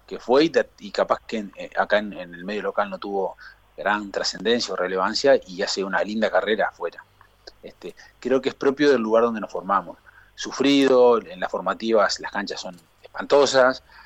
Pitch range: 105-135 Hz